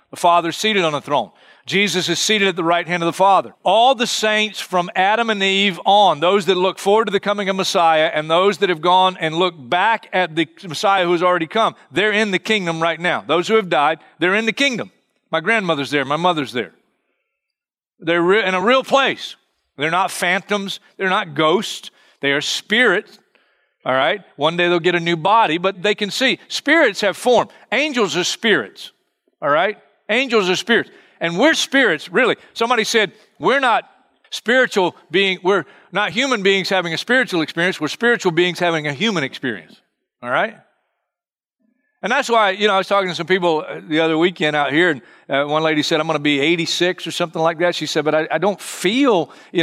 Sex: male